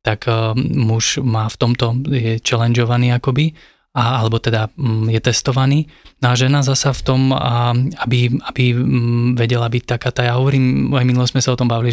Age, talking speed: 20-39, 180 wpm